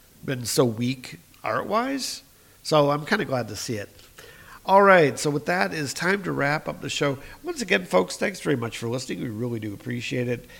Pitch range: 115-150 Hz